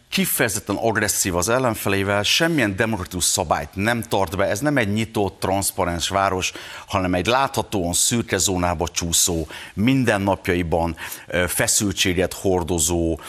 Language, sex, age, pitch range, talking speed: Hungarian, male, 60-79, 90-110 Hz, 115 wpm